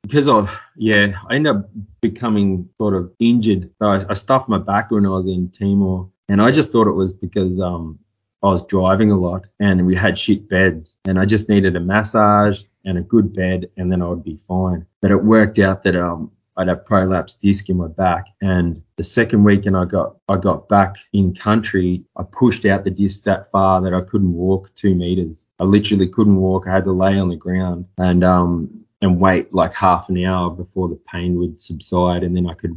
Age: 20-39